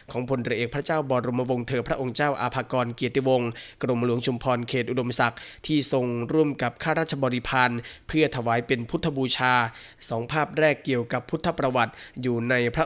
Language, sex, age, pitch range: Thai, male, 20-39, 120-140 Hz